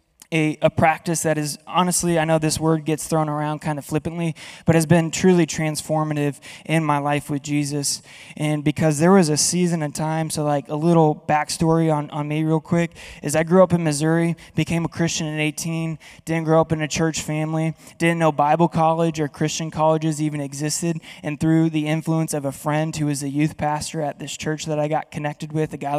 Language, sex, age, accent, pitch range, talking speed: English, male, 20-39, American, 150-165 Hz, 215 wpm